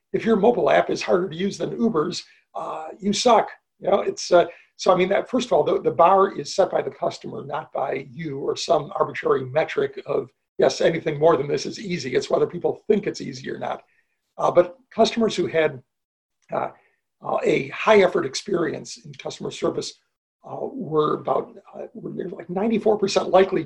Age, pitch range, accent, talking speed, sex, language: 50-69, 170-225 Hz, American, 200 wpm, male, English